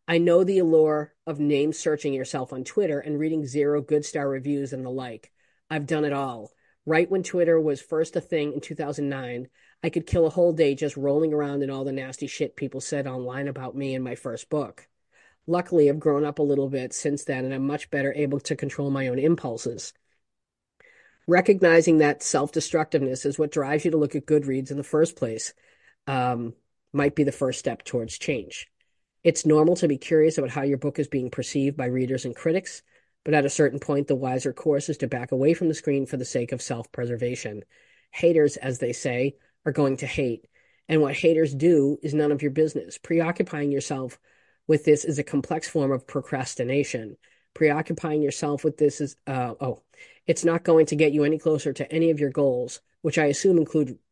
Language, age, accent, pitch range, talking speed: English, 40-59, American, 135-155 Hz, 205 wpm